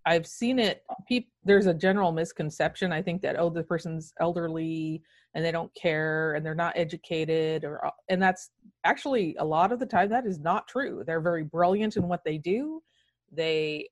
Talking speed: 190 wpm